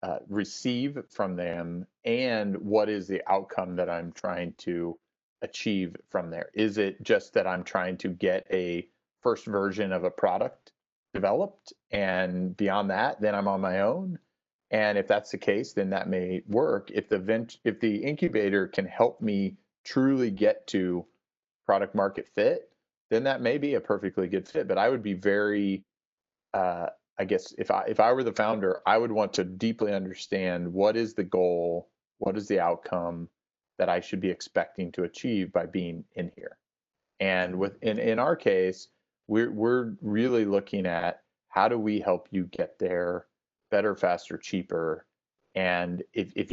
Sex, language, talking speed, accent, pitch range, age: male, English, 175 wpm, American, 90-110 Hz, 30-49